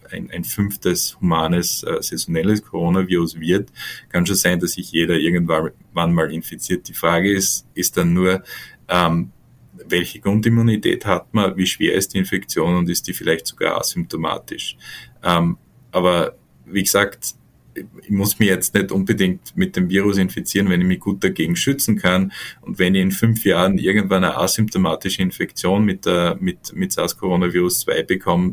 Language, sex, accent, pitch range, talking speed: German, male, Austrian, 90-105 Hz, 155 wpm